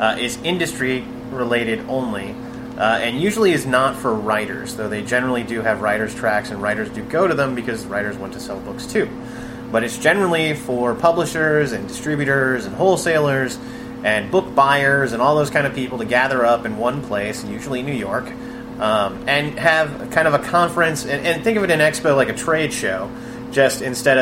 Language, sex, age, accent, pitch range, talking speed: English, male, 30-49, American, 120-145 Hz, 195 wpm